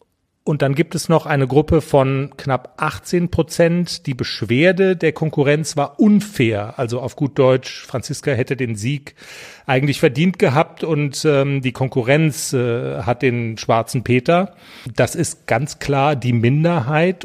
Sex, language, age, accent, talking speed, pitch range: male, German, 40-59, German, 150 wpm, 130-160 Hz